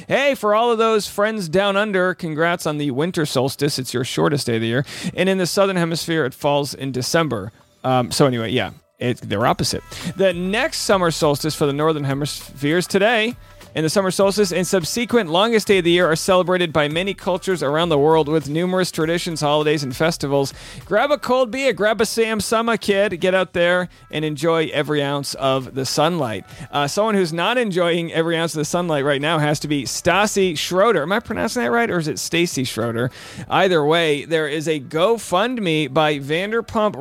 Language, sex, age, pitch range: English, male, 40-59, 145-185 Hz